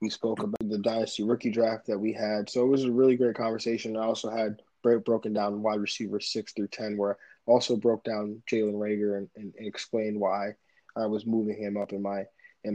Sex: male